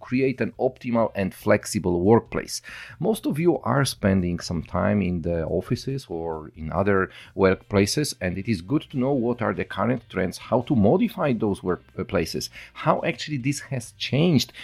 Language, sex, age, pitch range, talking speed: English, male, 40-59, 95-120 Hz, 170 wpm